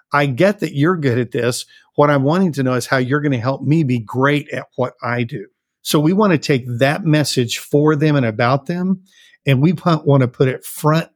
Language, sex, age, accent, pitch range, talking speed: English, male, 50-69, American, 130-160 Hz, 235 wpm